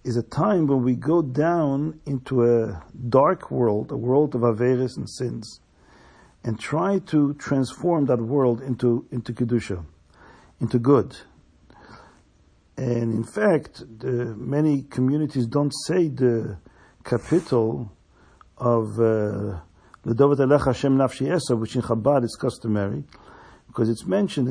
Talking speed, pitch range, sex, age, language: 130 wpm, 115-140 Hz, male, 50-69, English